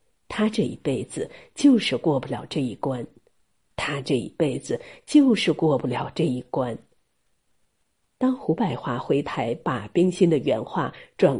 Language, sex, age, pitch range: Chinese, female, 50-69, 140-210 Hz